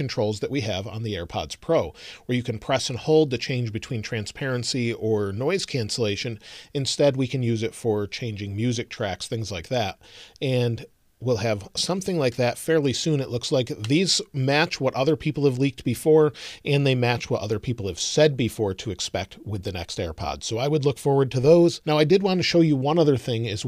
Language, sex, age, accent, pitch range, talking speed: English, male, 40-59, American, 110-145 Hz, 215 wpm